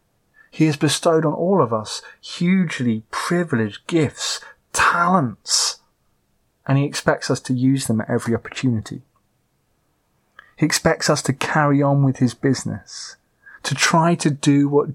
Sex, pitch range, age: male, 115-150 Hz, 30-49